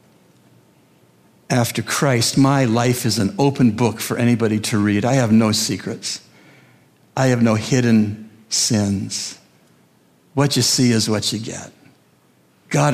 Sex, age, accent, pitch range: male, 60-79, American, 105-130 Hz